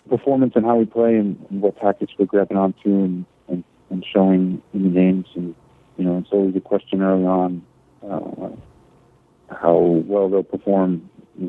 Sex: male